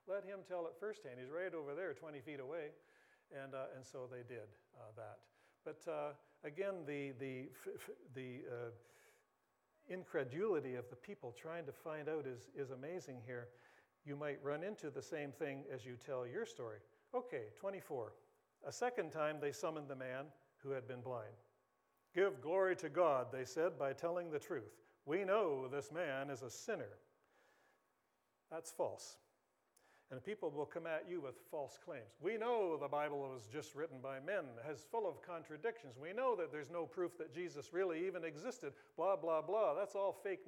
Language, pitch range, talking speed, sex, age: English, 140-205 Hz, 185 wpm, male, 50-69